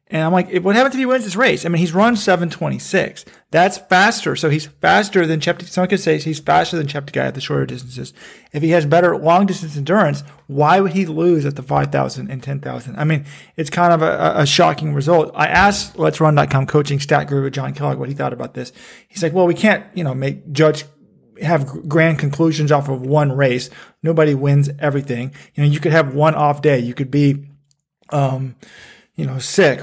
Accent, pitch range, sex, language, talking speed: American, 140-180 Hz, male, English, 220 wpm